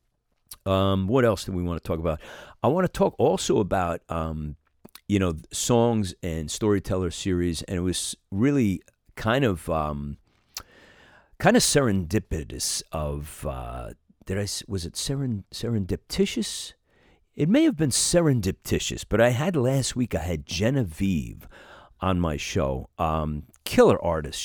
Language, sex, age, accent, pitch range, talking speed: English, male, 40-59, American, 80-115 Hz, 140 wpm